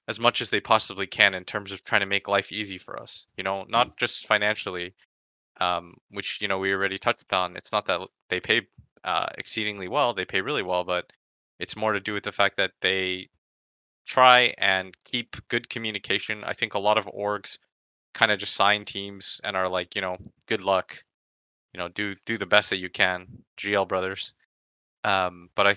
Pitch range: 95-105 Hz